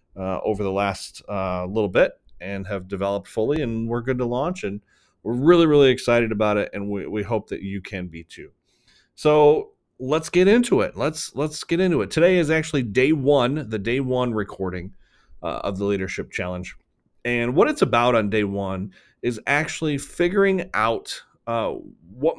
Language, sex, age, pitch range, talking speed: English, male, 30-49, 105-145 Hz, 185 wpm